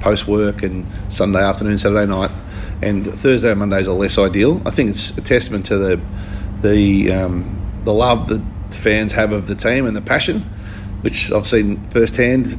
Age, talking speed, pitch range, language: 30-49, 175 wpm, 95-110 Hz, English